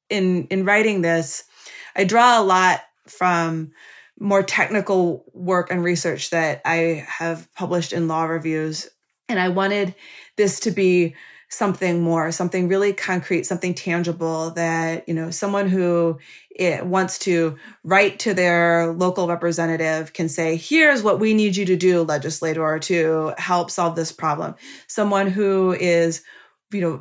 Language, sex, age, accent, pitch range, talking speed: English, female, 20-39, American, 165-190 Hz, 150 wpm